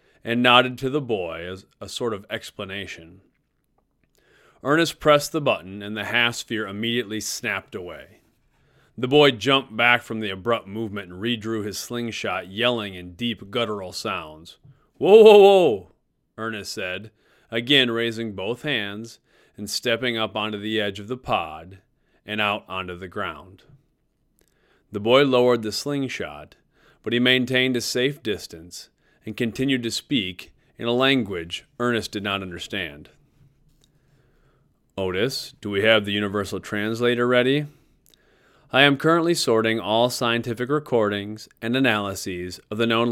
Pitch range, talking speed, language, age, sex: 105-130 Hz, 140 wpm, English, 30-49, male